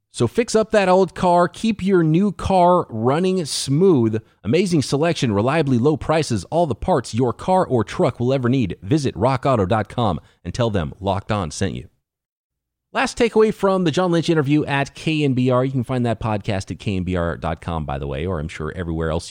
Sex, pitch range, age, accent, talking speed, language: male, 100-135 Hz, 30-49, American, 185 wpm, English